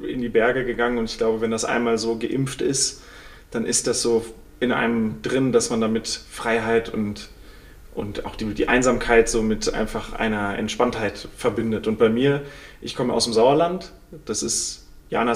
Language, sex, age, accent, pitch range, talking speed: German, male, 30-49, German, 115-145 Hz, 185 wpm